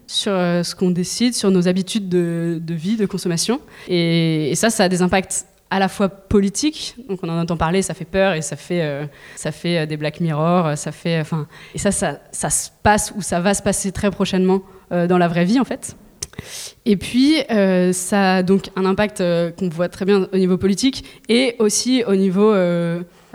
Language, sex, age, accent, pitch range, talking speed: French, female, 20-39, French, 175-210 Hz, 215 wpm